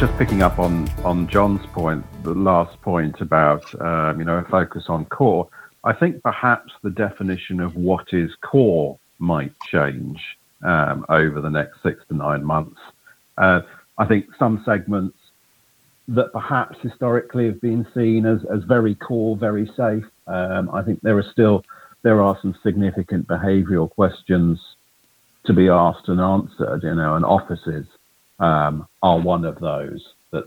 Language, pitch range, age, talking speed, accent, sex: English, 80-100 Hz, 50-69, 160 wpm, British, male